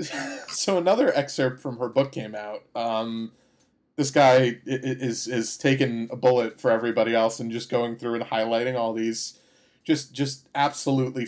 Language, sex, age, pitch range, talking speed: English, male, 30-49, 120-175 Hz, 160 wpm